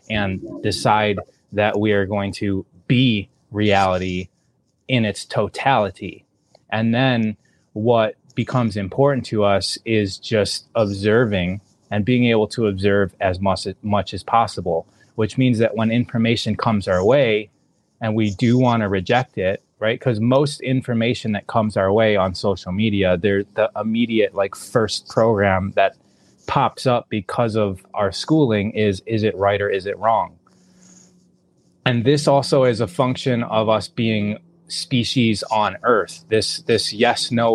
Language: English